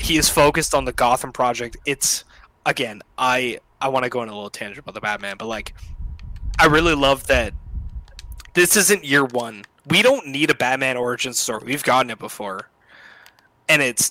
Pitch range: 115-160 Hz